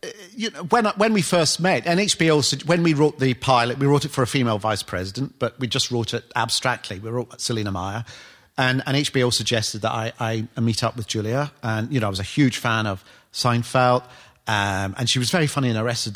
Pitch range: 115-145 Hz